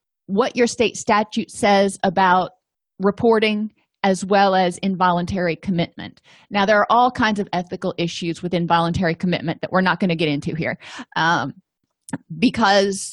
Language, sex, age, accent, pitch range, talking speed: English, female, 30-49, American, 180-235 Hz, 150 wpm